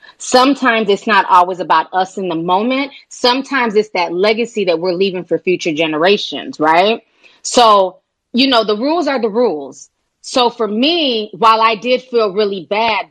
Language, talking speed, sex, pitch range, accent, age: English, 170 wpm, female, 205-260 Hz, American, 20-39